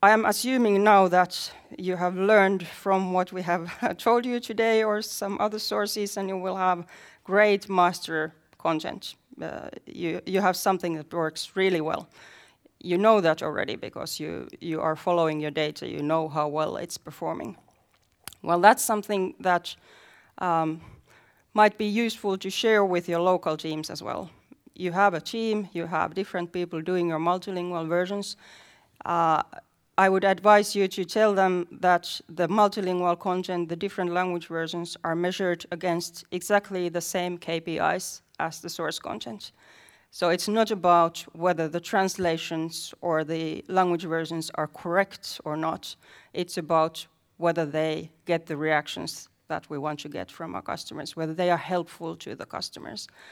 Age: 30-49